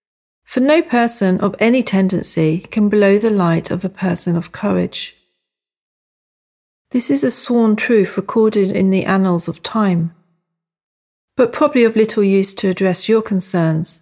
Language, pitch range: English, 175-230 Hz